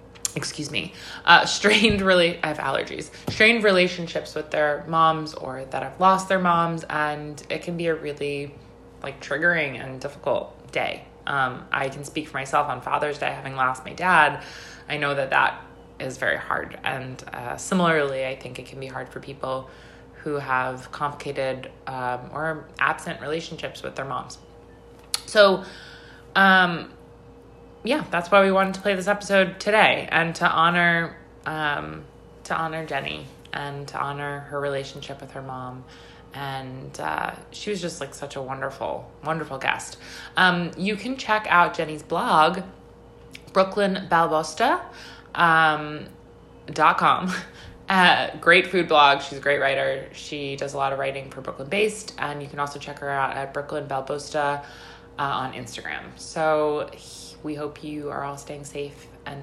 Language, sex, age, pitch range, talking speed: English, female, 20-39, 140-175 Hz, 160 wpm